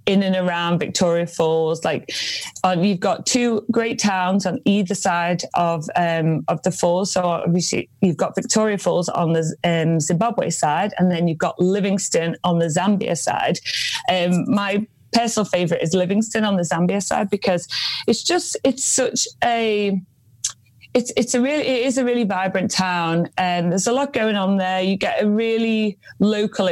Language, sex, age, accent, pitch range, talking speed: English, female, 30-49, British, 180-215 Hz, 175 wpm